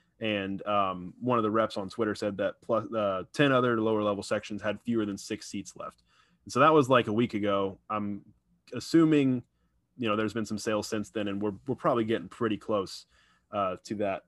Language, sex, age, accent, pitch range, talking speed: English, male, 20-39, American, 105-120 Hz, 210 wpm